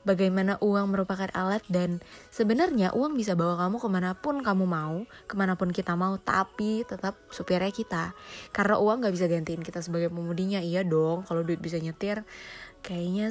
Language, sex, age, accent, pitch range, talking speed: Indonesian, female, 20-39, native, 180-215 Hz, 160 wpm